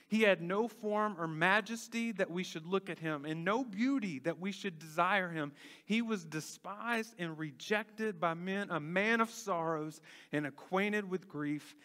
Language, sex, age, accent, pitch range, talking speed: English, male, 40-59, American, 150-200 Hz, 175 wpm